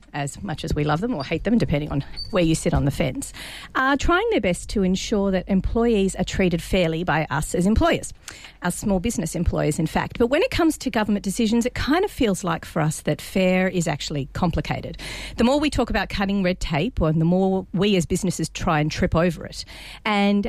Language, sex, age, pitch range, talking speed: English, female, 40-59, 170-235 Hz, 225 wpm